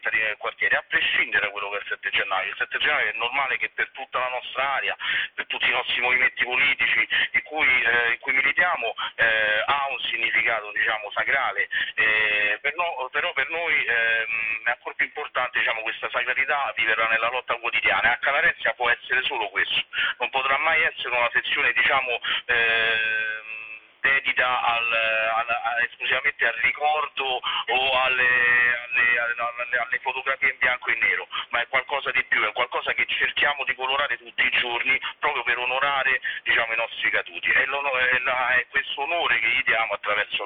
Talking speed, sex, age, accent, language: 175 wpm, male, 40-59, native, Italian